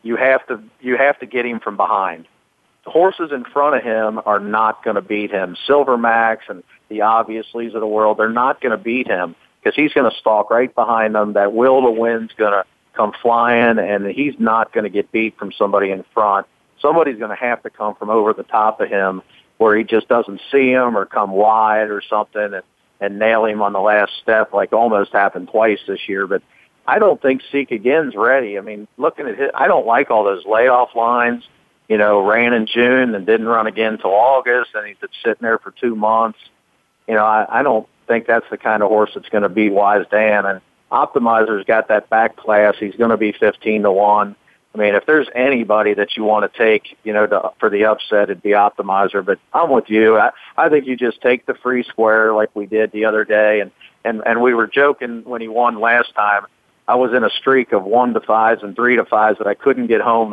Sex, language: male, English